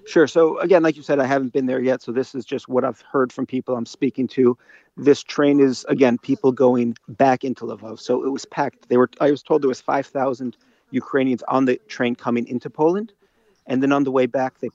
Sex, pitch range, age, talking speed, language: male, 115-135 Hz, 40-59, 235 wpm, English